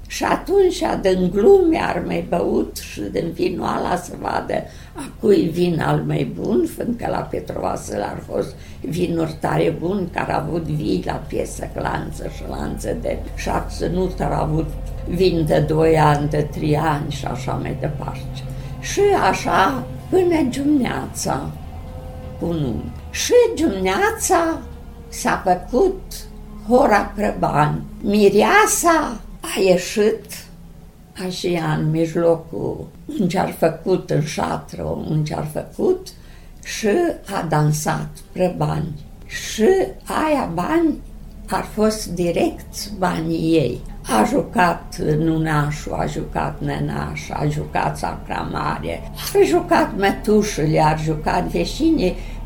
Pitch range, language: 155-220 Hz, Romanian